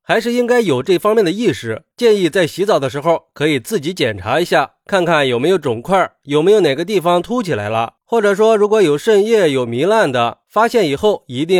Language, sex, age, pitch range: Chinese, male, 30-49, 145-225 Hz